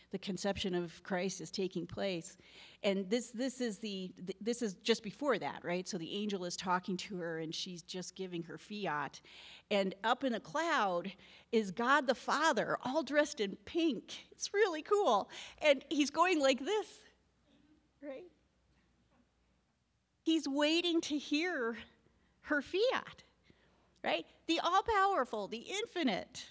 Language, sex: English, female